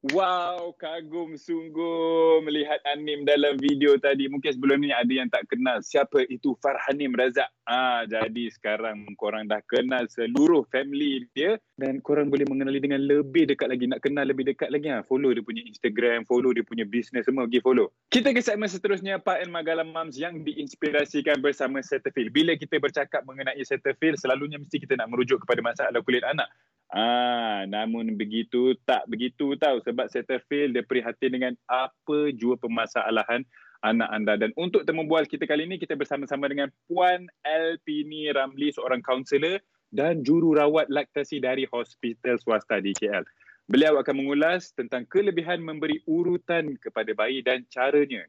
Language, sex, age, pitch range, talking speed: Malay, male, 20-39, 125-160 Hz, 165 wpm